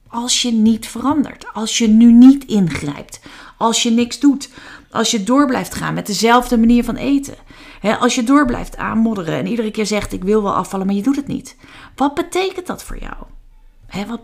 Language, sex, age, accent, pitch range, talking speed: Dutch, female, 40-59, Dutch, 200-270 Hz, 200 wpm